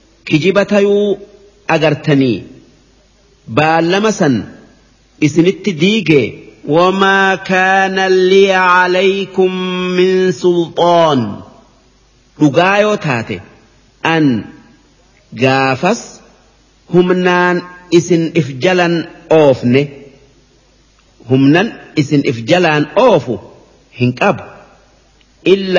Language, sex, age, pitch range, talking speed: Arabic, male, 50-69, 150-185 Hz, 60 wpm